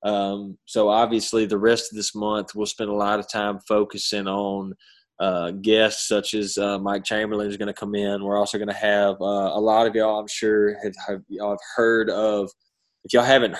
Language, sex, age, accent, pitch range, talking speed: English, male, 20-39, American, 100-110 Hz, 215 wpm